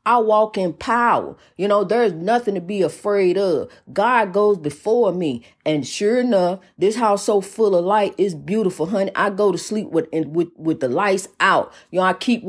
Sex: female